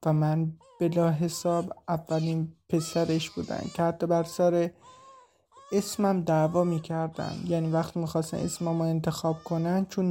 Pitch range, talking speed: 170-220 Hz, 135 wpm